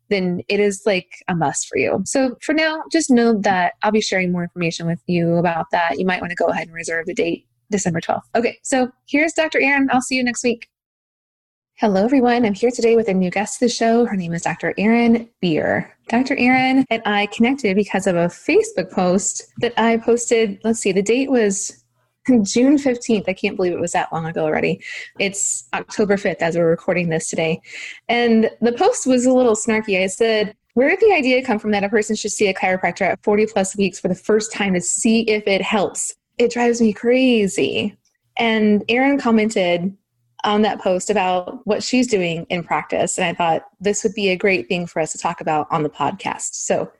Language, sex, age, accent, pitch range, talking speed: English, female, 20-39, American, 185-235 Hz, 215 wpm